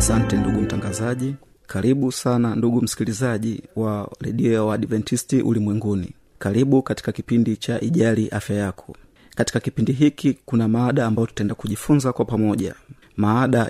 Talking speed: 125 wpm